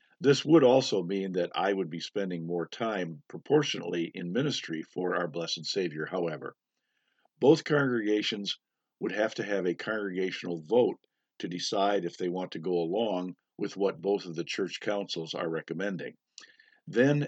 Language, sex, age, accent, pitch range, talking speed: English, male, 50-69, American, 90-110 Hz, 160 wpm